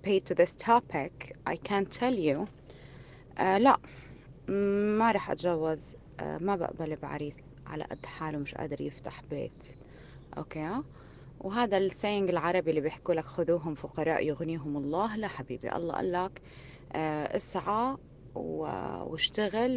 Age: 20-39